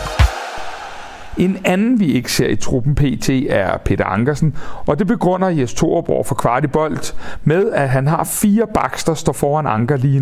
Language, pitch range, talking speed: Danish, 130-180 Hz, 165 wpm